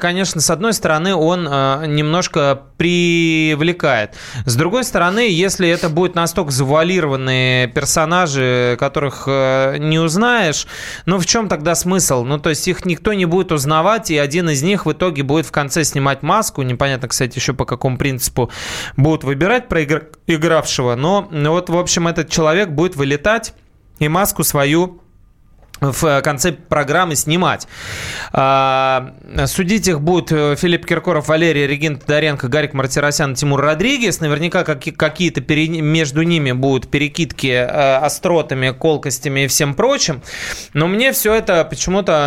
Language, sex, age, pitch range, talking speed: Russian, male, 20-39, 140-175 Hz, 135 wpm